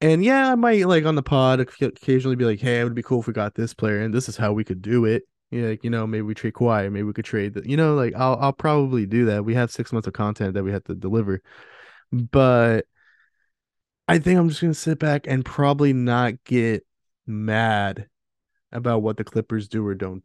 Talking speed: 245 wpm